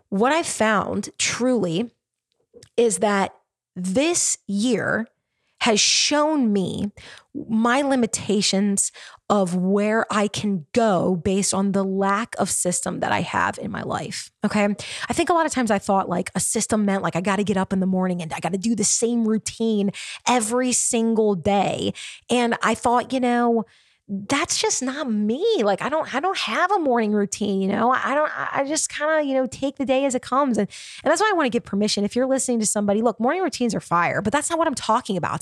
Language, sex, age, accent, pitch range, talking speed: English, female, 20-39, American, 195-255 Hz, 210 wpm